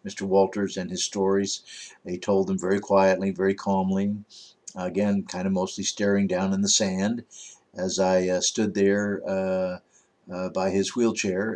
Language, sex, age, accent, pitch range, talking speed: English, male, 60-79, American, 95-115 Hz, 160 wpm